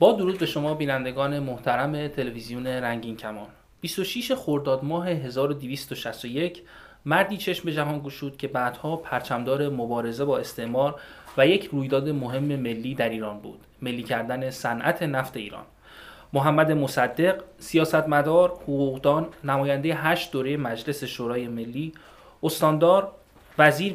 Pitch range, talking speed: 130-160 Hz, 120 wpm